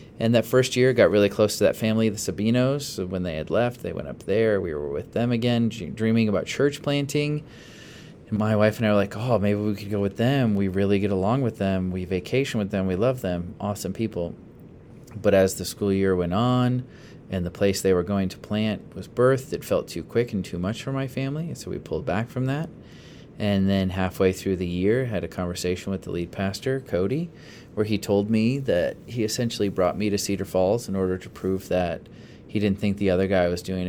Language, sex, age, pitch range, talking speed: English, male, 30-49, 95-120 Hz, 235 wpm